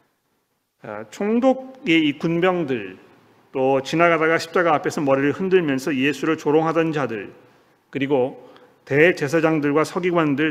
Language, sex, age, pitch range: Korean, male, 40-59, 145-185 Hz